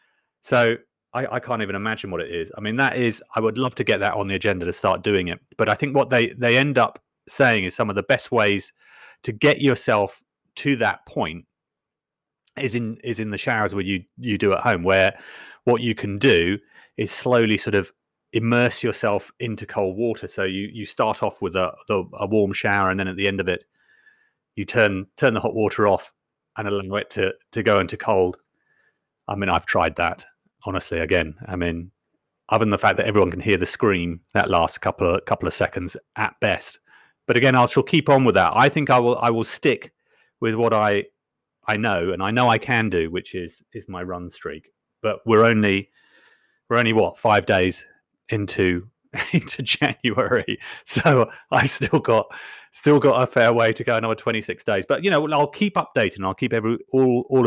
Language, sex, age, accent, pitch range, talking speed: English, male, 30-49, British, 100-125 Hz, 210 wpm